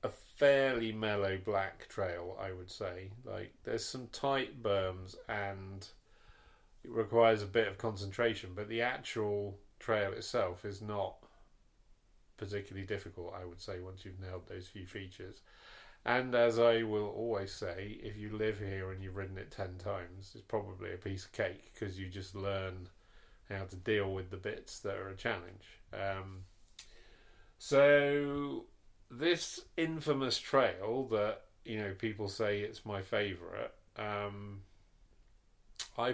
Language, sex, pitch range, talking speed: English, male, 95-120 Hz, 145 wpm